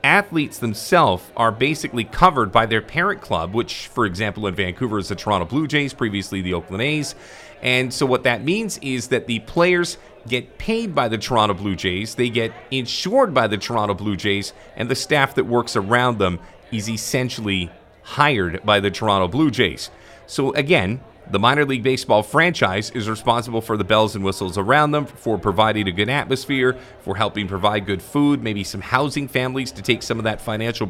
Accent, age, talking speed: American, 30-49, 190 wpm